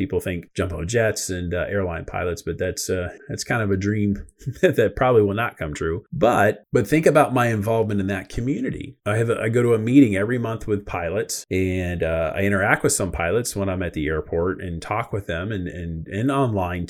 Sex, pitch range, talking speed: male, 100-135 Hz, 225 wpm